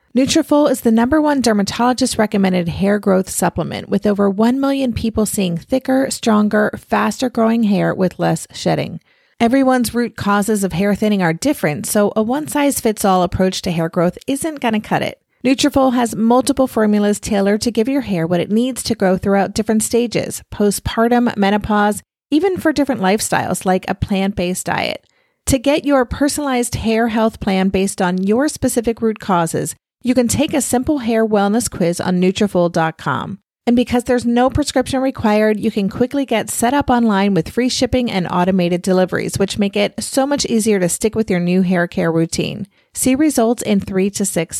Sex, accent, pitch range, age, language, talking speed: female, American, 195-255 Hz, 30-49, English, 180 wpm